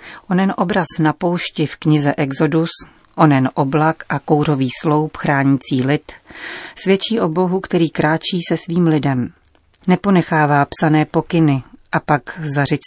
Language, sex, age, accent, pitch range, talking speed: Czech, female, 40-59, native, 140-170 Hz, 130 wpm